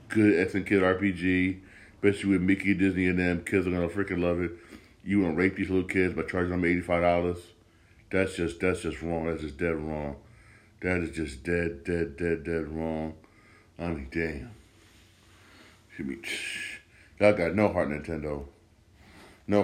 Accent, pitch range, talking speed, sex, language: American, 90-120 Hz, 170 wpm, male, English